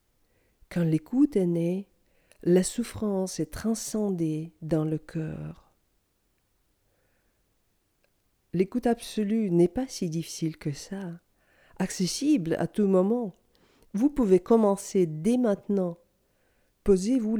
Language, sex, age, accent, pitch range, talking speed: French, female, 50-69, French, 165-235 Hz, 100 wpm